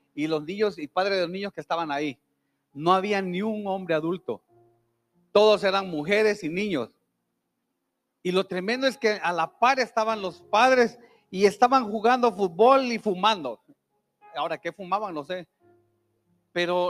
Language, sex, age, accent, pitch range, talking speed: Spanish, male, 40-59, Mexican, 155-215 Hz, 160 wpm